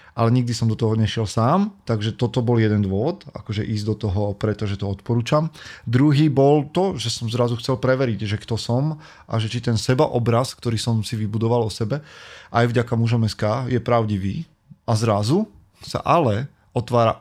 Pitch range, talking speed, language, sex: 100-120 Hz, 180 wpm, Slovak, male